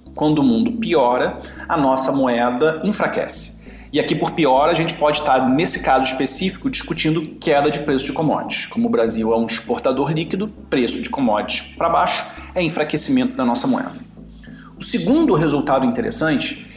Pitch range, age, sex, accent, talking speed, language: 150-230 Hz, 40-59, male, Brazilian, 165 wpm, Portuguese